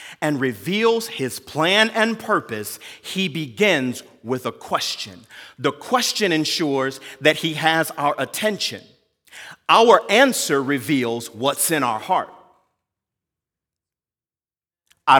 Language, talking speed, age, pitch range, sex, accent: English, 105 wpm, 40-59, 145-205 Hz, male, American